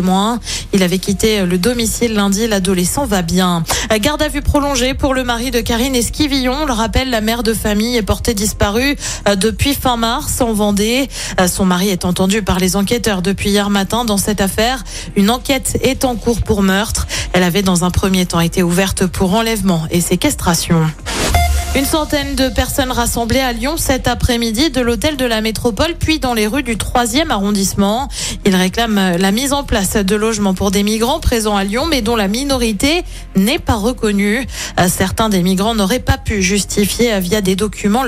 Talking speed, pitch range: 185 wpm, 195-255 Hz